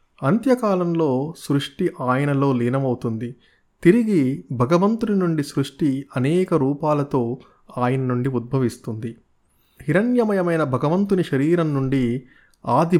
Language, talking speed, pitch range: Telugu, 85 wpm, 125-165 Hz